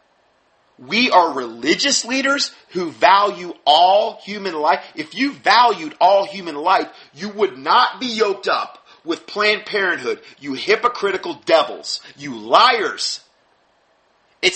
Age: 40-59